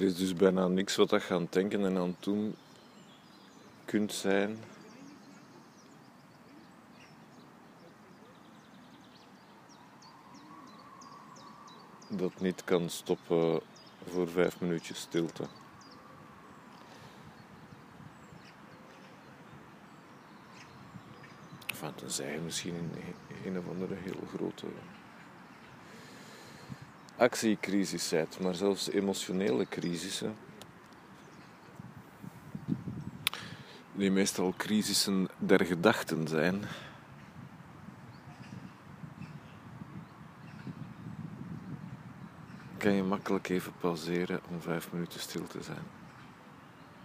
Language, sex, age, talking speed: Dutch, male, 50-69, 70 wpm